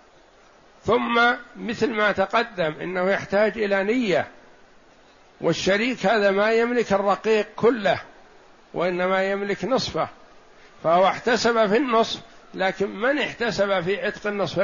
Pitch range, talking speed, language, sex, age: 180-220 Hz, 110 wpm, Arabic, male, 60-79